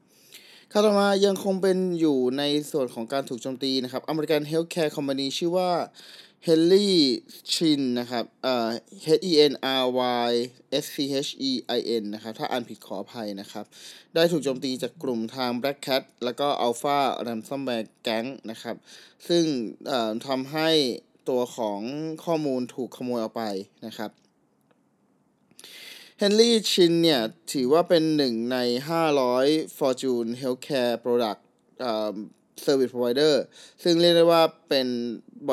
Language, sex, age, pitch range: Thai, male, 20-39, 120-160 Hz